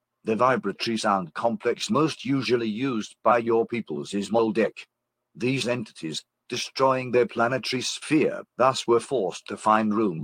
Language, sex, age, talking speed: English, male, 50-69, 140 wpm